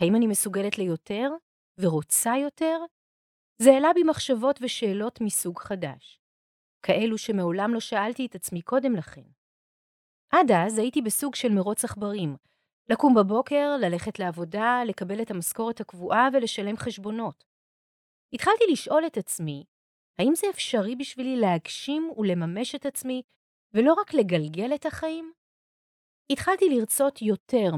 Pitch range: 180-260 Hz